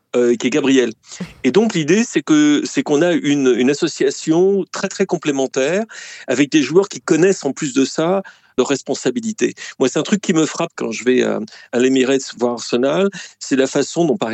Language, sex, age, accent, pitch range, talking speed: French, male, 40-59, French, 125-210 Hz, 205 wpm